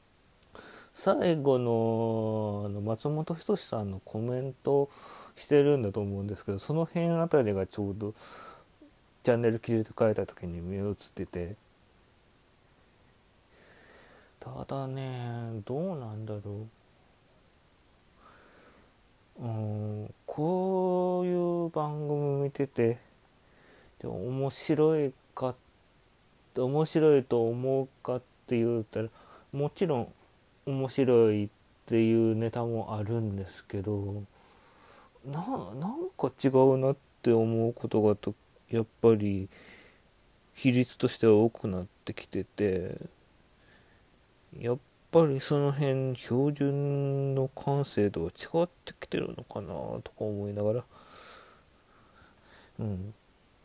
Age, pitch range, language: 30-49, 105-140 Hz, Japanese